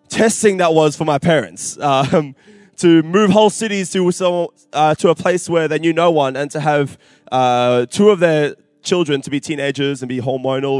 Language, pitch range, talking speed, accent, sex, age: English, 145-180 Hz, 195 wpm, Australian, male, 20-39